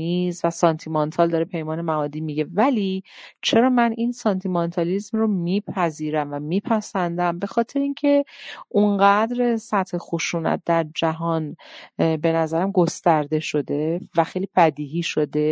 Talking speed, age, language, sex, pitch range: 120 wpm, 40-59, Persian, female, 165-200 Hz